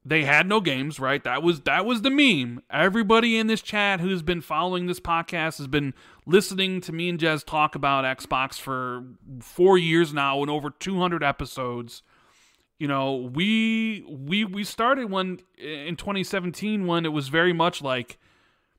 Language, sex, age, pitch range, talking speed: English, male, 30-49, 140-180 Hz, 170 wpm